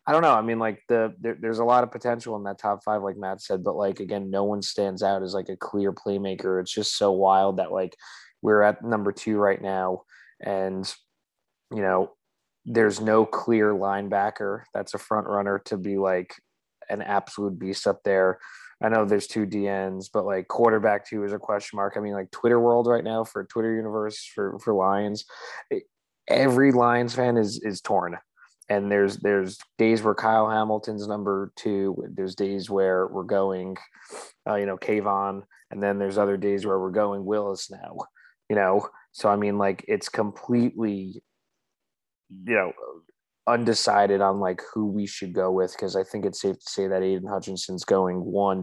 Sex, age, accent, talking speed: male, 20-39, American, 190 wpm